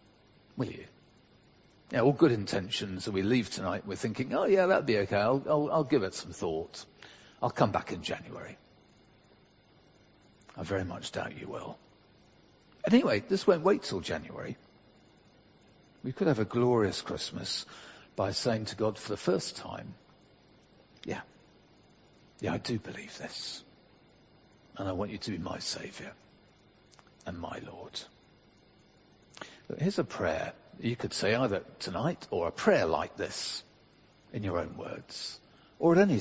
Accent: British